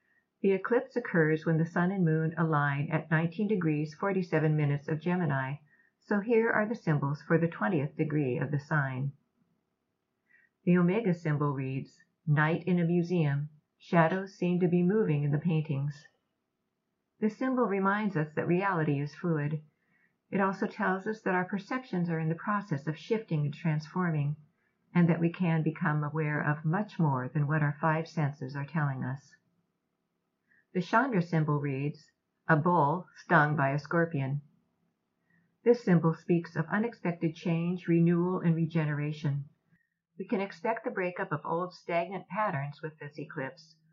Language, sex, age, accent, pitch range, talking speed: English, female, 50-69, American, 150-185 Hz, 155 wpm